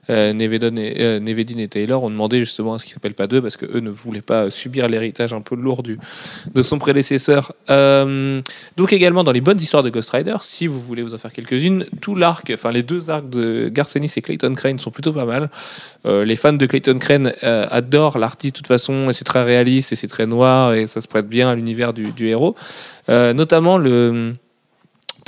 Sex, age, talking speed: male, 30-49, 225 wpm